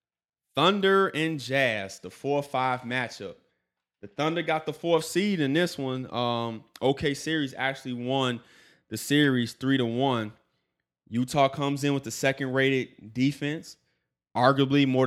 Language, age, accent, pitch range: English, 20-39, American, 110-135 Hz